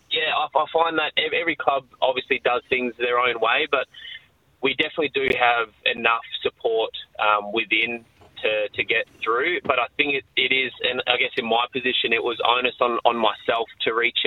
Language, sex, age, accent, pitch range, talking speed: English, male, 20-39, Australian, 110-155 Hz, 190 wpm